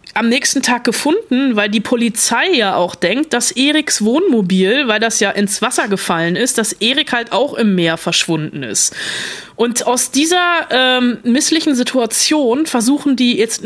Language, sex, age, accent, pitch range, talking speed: German, female, 20-39, German, 215-270 Hz, 165 wpm